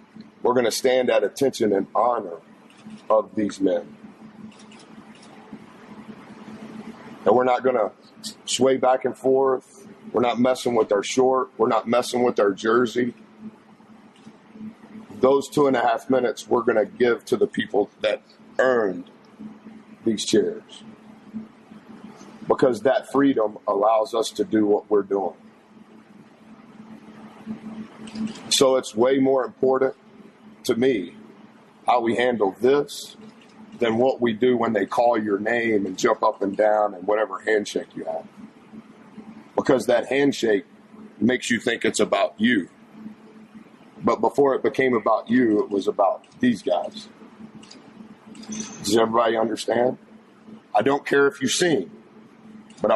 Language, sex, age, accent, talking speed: English, male, 50-69, American, 135 wpm